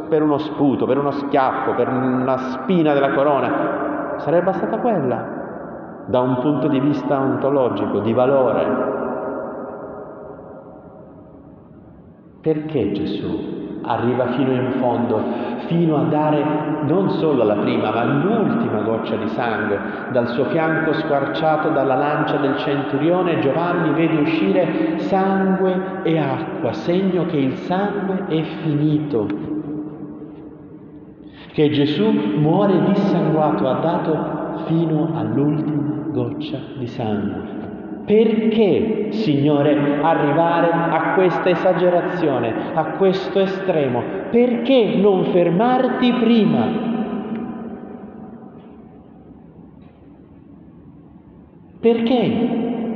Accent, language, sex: native, Italian, male